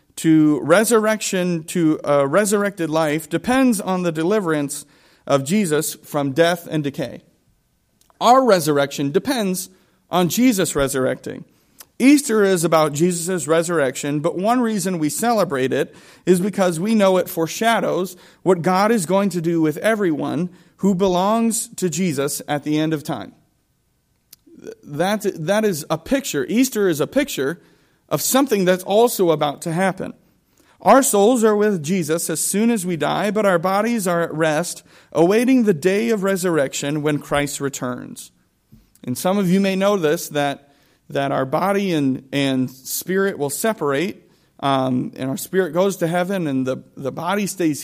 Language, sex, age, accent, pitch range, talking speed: English, male, 40-59, American, 150-200 Hz, 155 wpm